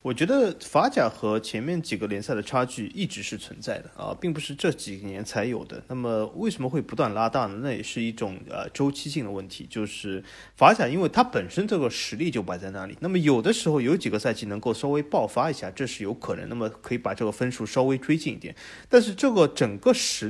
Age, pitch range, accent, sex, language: 30-49, 110-160 Hz, native, male, Chinese